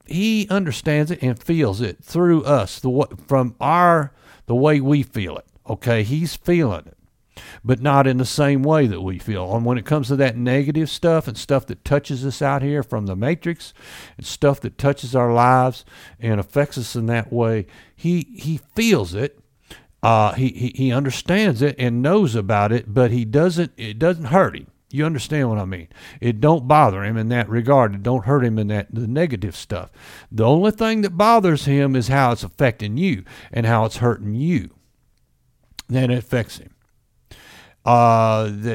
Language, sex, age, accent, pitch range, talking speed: English, male, 50-69, American, 110-145 Hz, 190 wpm